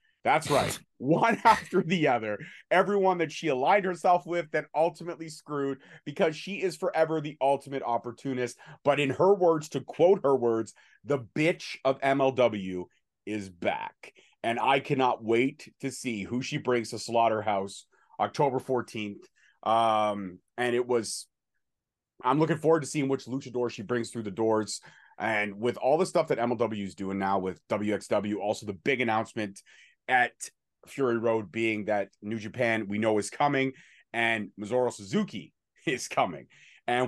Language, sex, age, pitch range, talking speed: English, male, 30-49, 105-140 Hz, 160 wpm